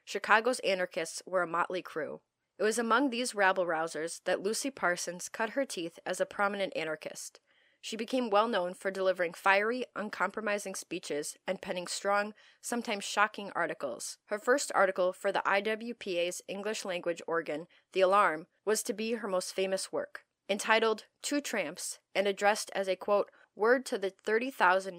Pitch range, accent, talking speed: 180-220 Hz, American, 155 wpm